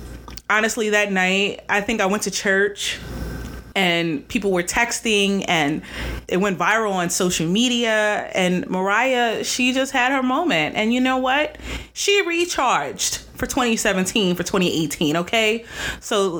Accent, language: American, English